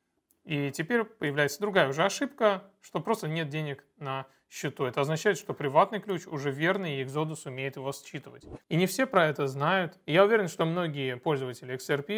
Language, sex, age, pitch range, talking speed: Russian, male, 30-49, 135-175 Hz, 175 wpm